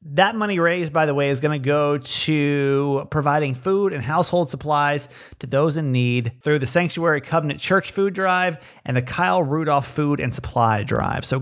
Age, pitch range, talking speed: 30-49, 135-180 Hz, 190 wpm